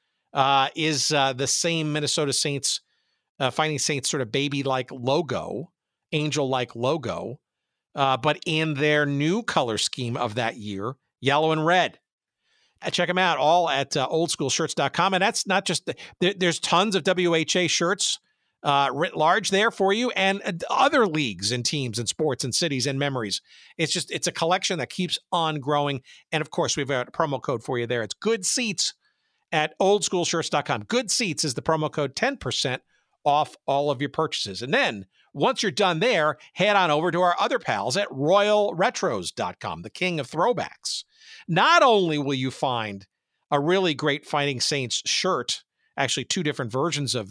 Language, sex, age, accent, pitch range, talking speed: English, male, 50-69, American, 130-175 Hz, 180 wpm